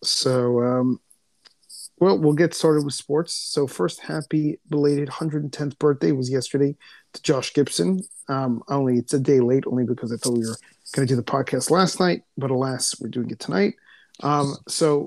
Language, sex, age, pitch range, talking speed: English, male, 30-49, 130-155 Hz, 185 wpm